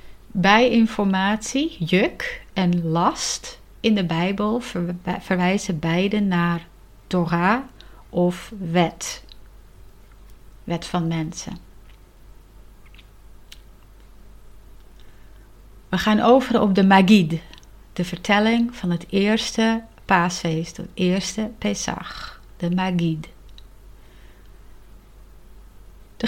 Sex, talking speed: female, 80 wpm